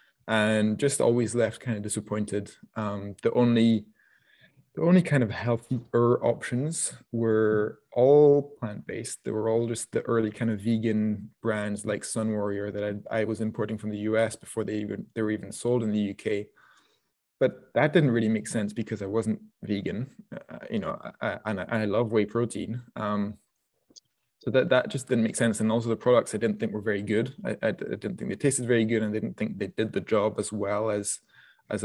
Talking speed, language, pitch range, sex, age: 200 wpm, English, 105-120 Hz, male, 20-39